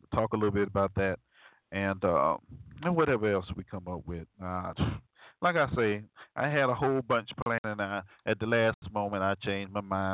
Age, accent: 40-59, American